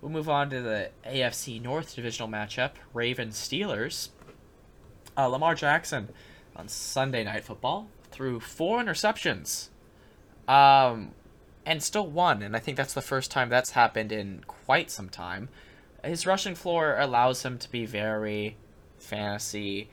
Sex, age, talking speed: male, 10-29, 145 wpm